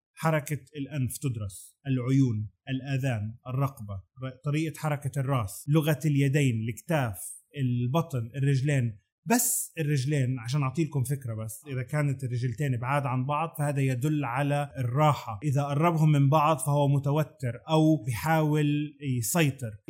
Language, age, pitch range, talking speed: Arabic, 30-49, 130-155 Hz, 120 wpm